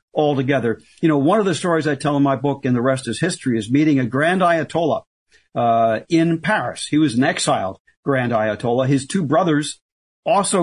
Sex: male